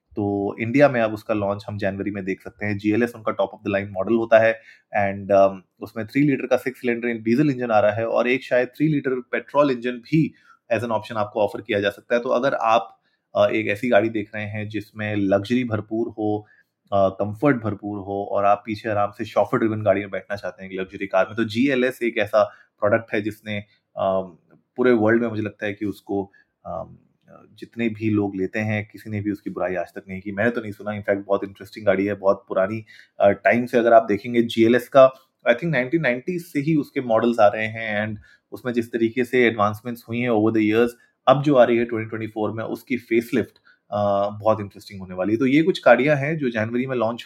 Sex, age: male, 30-49